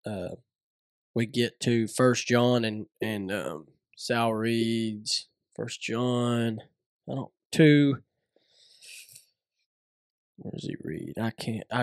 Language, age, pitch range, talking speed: English, 20-39, 115-130 Hz, 110 wpm